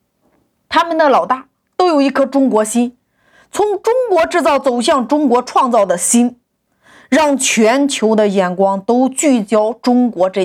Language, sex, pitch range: Chinese, female, 225-320 Hz